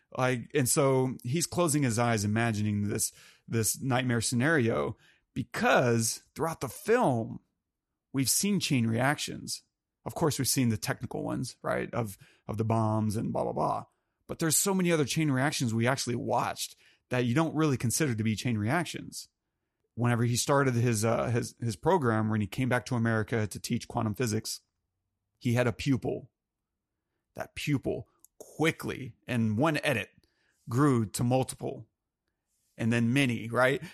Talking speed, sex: 160 wpm, male